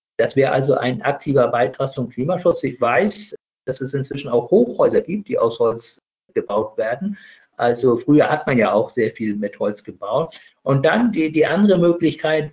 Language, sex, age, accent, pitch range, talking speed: German, male, 50-69, German, 125-195 Hz, 180 wpm